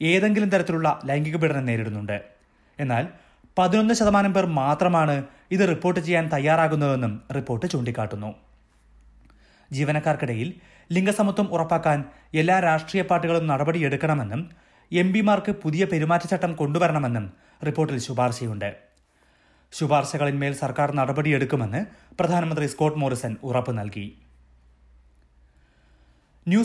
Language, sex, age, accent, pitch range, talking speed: Malayalam, male, 30-49, native, 125-175 Hz, 90 wpm